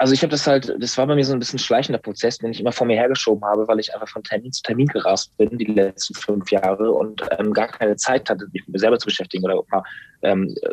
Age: 20-39